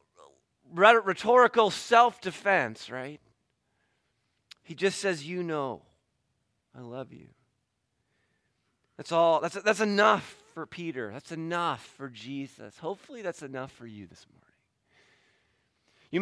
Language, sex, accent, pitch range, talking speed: English, male, American, 145-195 Hz, 110 wpm